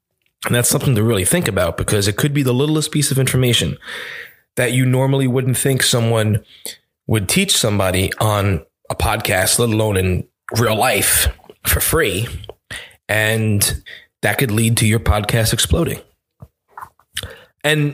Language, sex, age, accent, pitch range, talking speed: English, male, 20-39, American, 100-125 Hz, 145 wpm